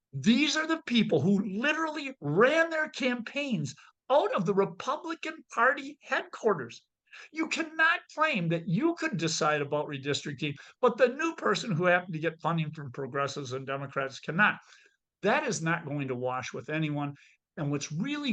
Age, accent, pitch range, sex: 50-69, American, 140-225 Hz, male